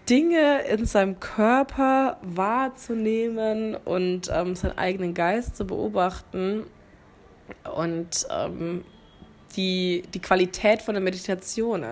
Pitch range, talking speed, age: 175-215 Hz, 100 wpm, 20-39